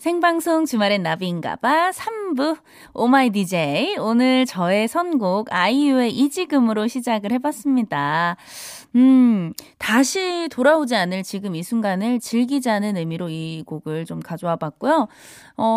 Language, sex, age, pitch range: Korean, female, 20-39, 180-255 Hz